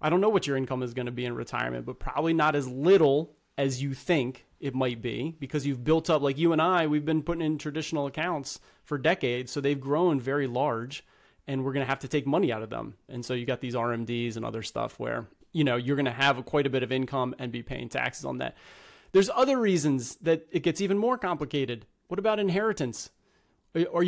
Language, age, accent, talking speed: English, 30-49, American, 235 wpm